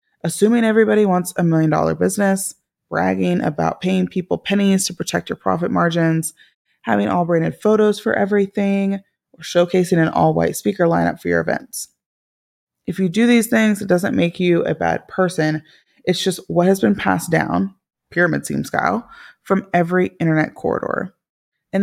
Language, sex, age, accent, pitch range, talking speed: English, female, 20-39, American, 160-200 Hz, 165 wpm